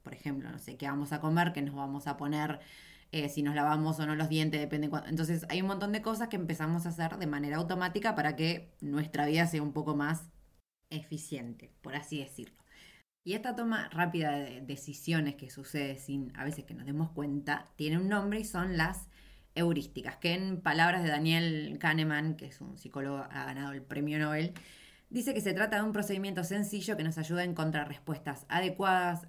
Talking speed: 205 wpm